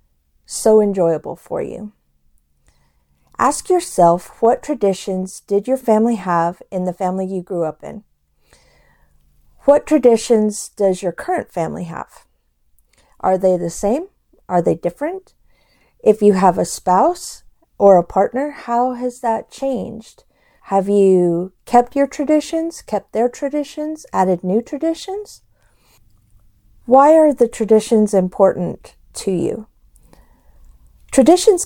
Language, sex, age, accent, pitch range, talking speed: English, female, 50-69, American, 180-260 Hz, 120 wpm